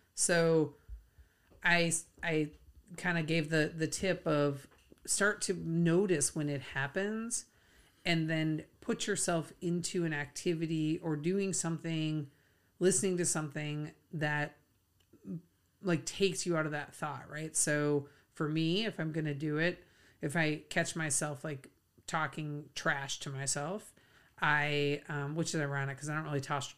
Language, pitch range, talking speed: English, 145-175 Hz, 145 wpm